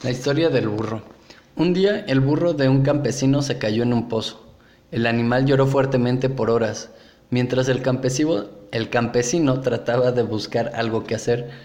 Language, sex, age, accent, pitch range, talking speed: Spanish, male, 20-39, Mexican, 120-135 Hz, 165 wpm